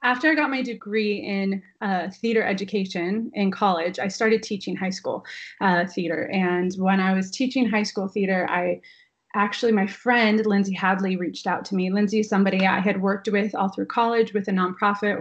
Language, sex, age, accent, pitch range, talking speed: English, female, 20-39, American, 185-220 Hz, 195 wpm